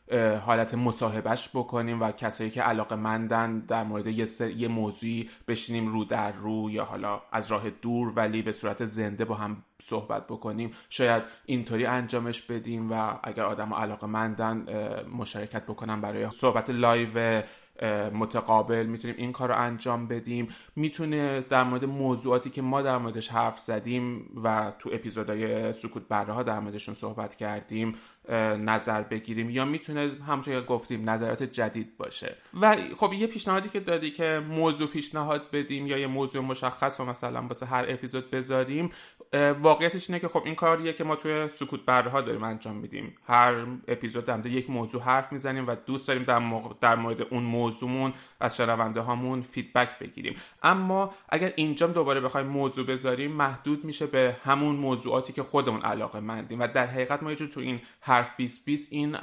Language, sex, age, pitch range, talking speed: Persian, male, 20-39, 115-135 Hz, 165 wpm